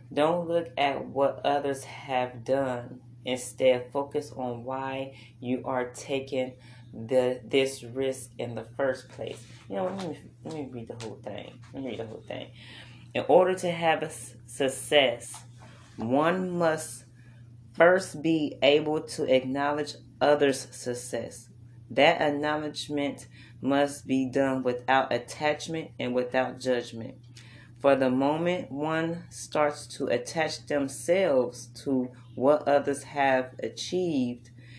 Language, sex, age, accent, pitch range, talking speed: English, female, 30-49, American, 120-145 Hz, 130 wpm